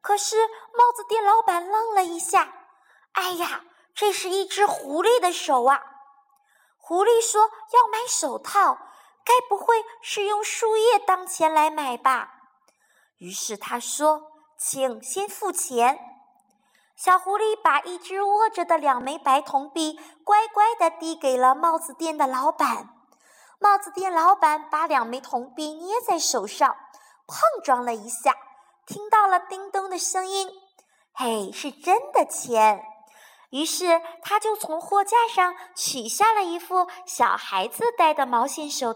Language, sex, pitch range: Chinese, male, 300-420 Hz